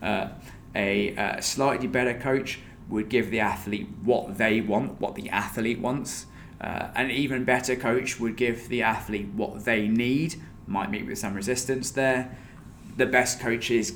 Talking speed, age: 165 wpm, 20-39